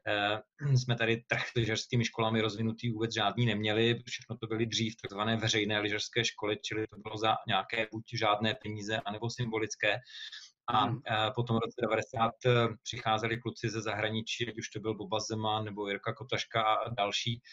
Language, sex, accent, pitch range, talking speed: Czech, male, native, 110-120 Hz, 165 wpm